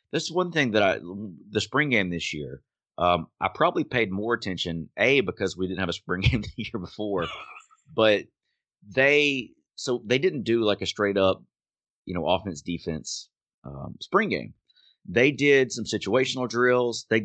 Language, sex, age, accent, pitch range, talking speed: English, male, 30-49, American, 85-110 Hz, 175 wpm